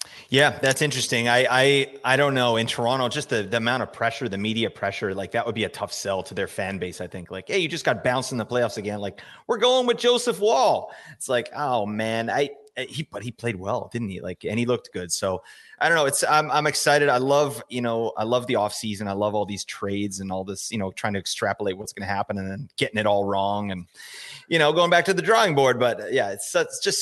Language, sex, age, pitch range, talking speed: English, male, 30-49, 105-130 Hz, 265 wpm